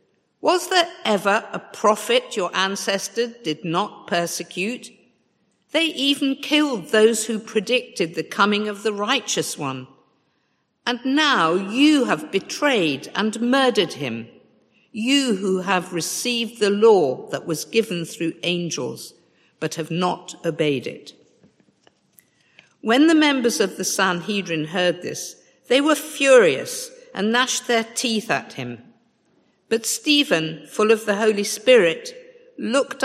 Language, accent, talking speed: English, British, 130 wpm